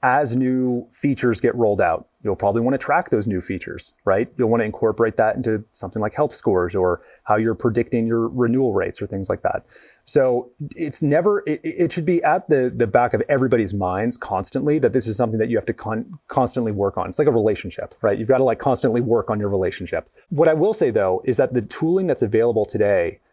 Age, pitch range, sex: 30-49, 115-140 Hz, male